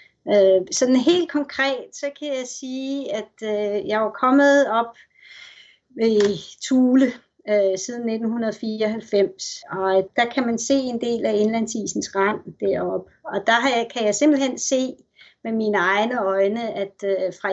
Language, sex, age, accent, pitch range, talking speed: Danish, female, 30-49, native, 210-260 Hz, 135 wpm